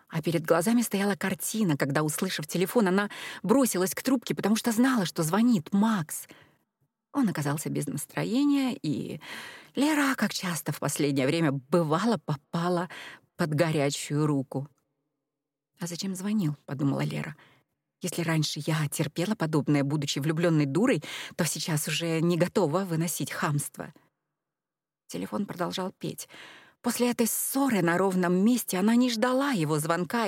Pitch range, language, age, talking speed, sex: 150-210 Hz, Russian, 30-49, 135 wpm, female